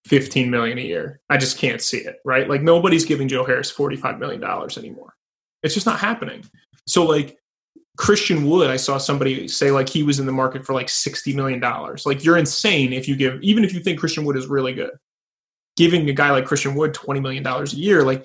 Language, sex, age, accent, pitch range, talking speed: English, male, 20-39, American, 135-165 Hz, 225 wpm